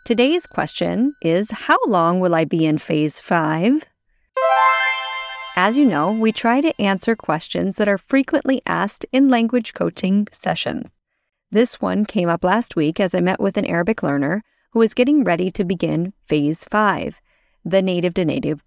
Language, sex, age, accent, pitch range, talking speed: English, female, 30-49, American, 175-245 Hz, 165 wpm